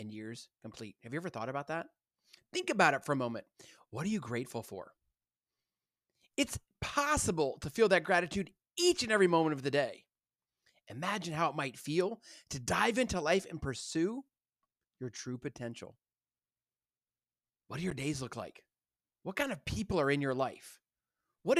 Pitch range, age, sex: 135-215 Hz, 30-49, male